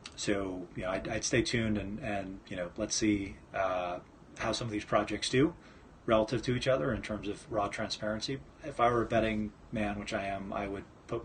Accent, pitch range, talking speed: American, 100-120 Hz, 220 wpm